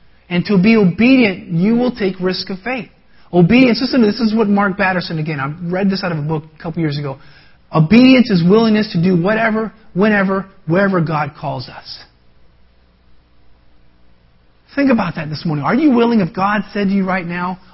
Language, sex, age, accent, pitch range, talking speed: English, male, 40-59, American, 125-205 Hz, 185 wpm